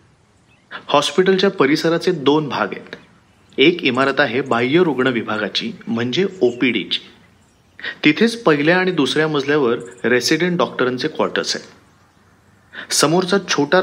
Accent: native